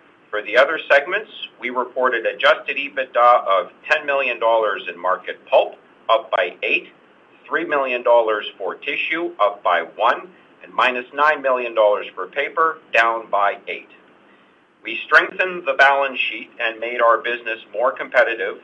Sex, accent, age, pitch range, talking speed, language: male, American, 50-69, 115-140 Hz, 140 wpm, English